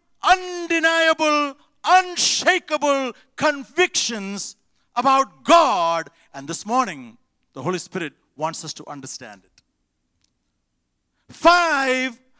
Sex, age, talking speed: male, 50-69, 80 wpm